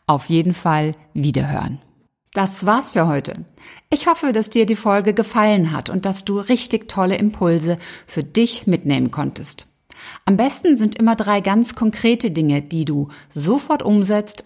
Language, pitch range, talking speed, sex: German, 170-225 Hz, 160 wpm, female